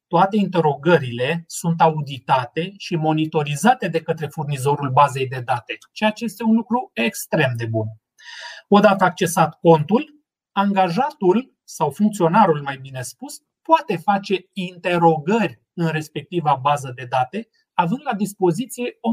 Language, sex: Romanian, male